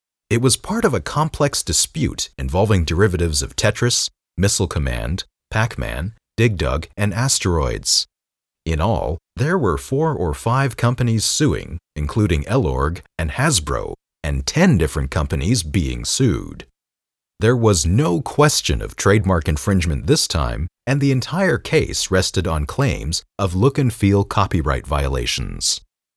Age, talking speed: 40-59, 130 wpm